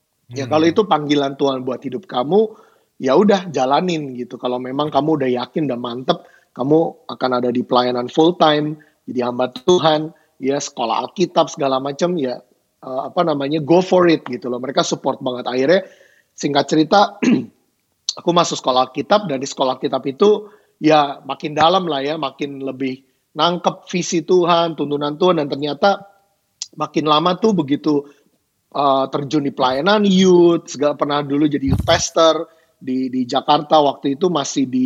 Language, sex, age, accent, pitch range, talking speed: Indonesian, male, 30-49, native, 140-180 Hz, 160 wpm